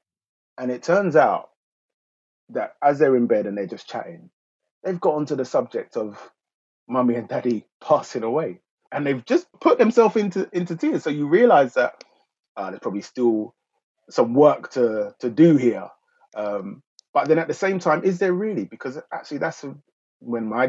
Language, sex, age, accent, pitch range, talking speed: English, male, 30-49, British, 115-165 Hz, 175 wpm